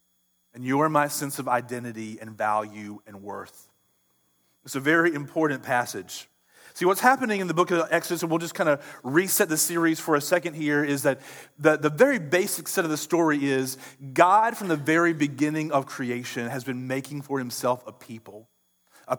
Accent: American